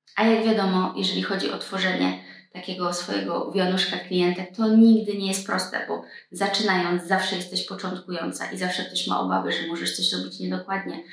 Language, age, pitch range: Polish, 20-39, 180-200 Hz